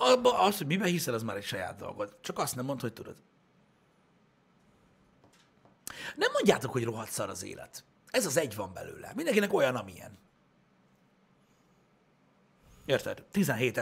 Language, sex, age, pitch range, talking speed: Hungarian, male, 60-79, 110-155 Hz, 135 wpm